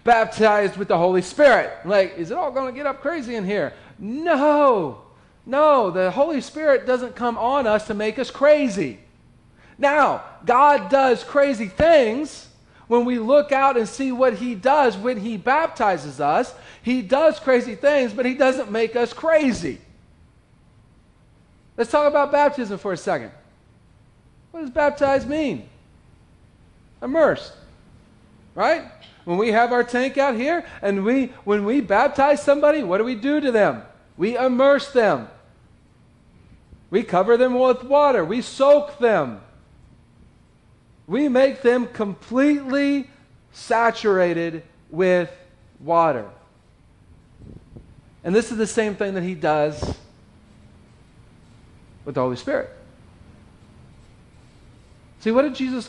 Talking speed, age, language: 135 wpm, 40-59, English